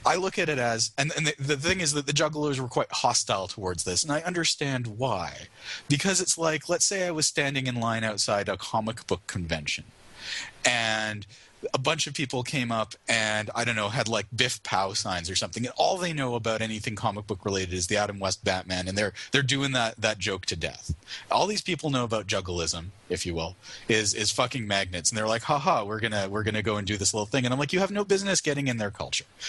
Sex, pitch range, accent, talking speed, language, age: male, 105-145 Hz, American, 240 wpm, English, 30-49